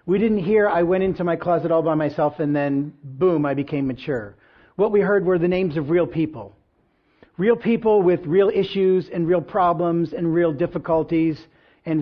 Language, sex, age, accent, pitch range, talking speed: English, male, 50-69, American, 150-200 Hz, 190 wpm